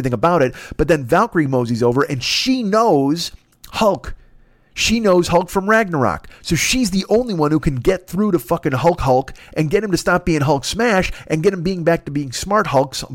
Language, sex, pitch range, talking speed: English, male, 130-175 Hz, 210 wpm